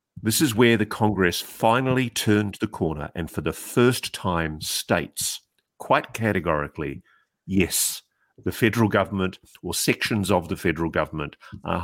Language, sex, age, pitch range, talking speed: English, male, 50-69, 90-120 Hz, 140 wpm